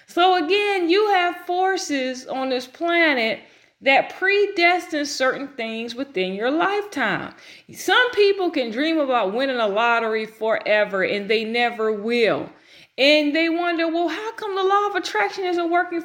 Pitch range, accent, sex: 245-340 Hz, American, female